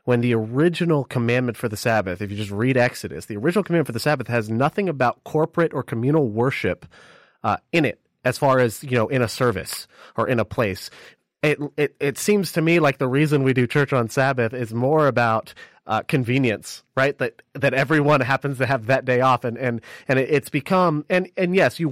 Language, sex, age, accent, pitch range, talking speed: English, male, 30-49, American, 120-155 Hz, 215 wpm